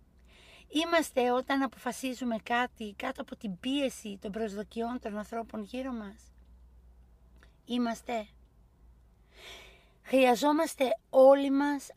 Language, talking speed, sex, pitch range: Greek, 90 wpm, female, 200-260 Hz